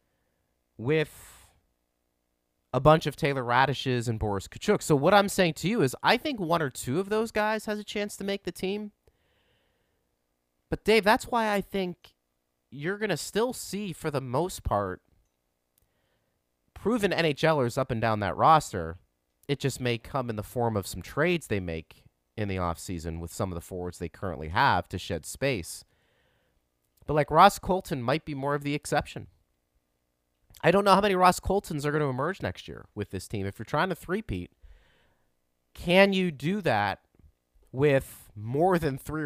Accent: American